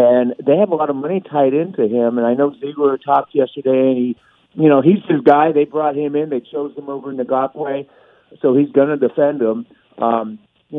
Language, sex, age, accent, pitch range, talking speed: English, male, 50-69, American, 135-170 Hz, 235 wpm